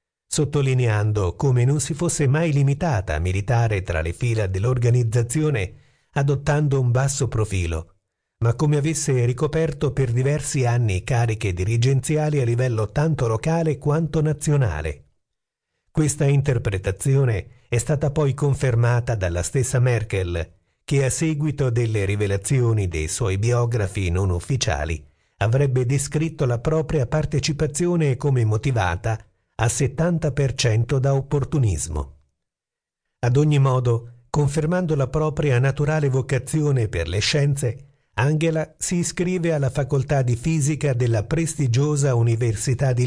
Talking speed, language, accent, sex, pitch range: 115 wpm, Italian, native, male, 110-145 Hz